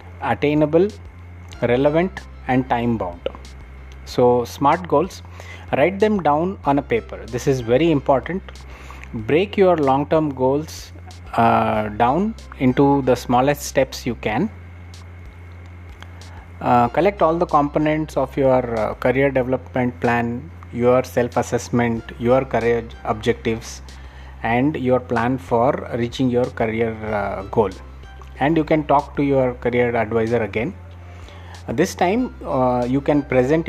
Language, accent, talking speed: English, Indian, 125 wpm